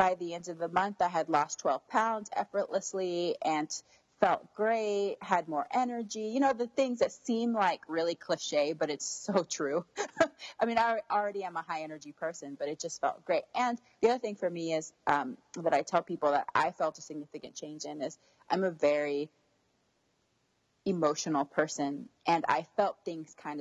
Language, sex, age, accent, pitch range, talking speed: English, female, 30-49, American, 150-195 Hz, 190 wpm